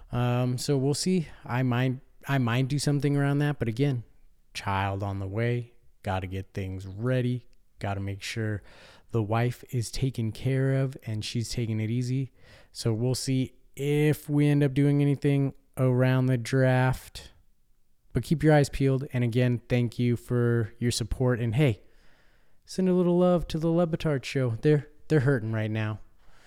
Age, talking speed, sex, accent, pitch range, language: 20-39, 175 wpm, male, American, 110-135 Hz, English